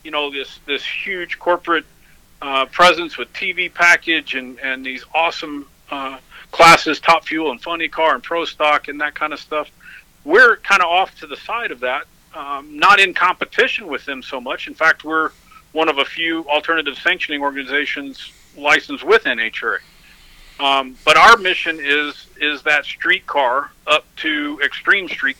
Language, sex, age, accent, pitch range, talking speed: English, male, 50-69, American, 140-165 Hz, 170 wpm